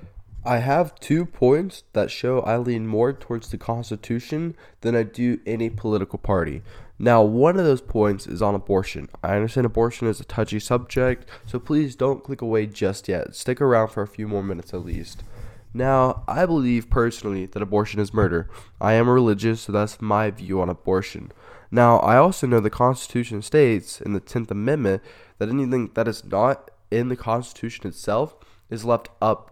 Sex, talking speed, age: male, 180 wpm, 10-29